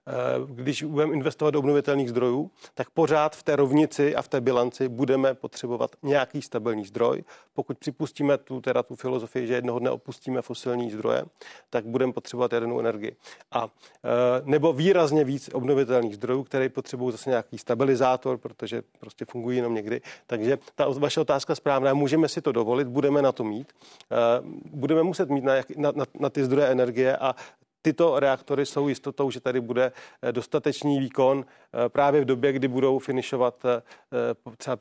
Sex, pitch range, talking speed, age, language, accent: male, 125-140 Hz, 160 wpm, 40-59, Czech, native